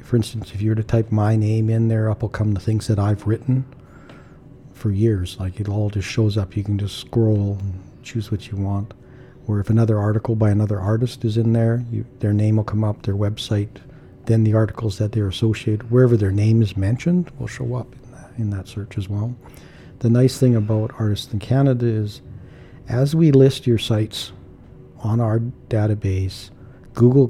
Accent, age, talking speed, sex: American, 50-69, 200 wpm, male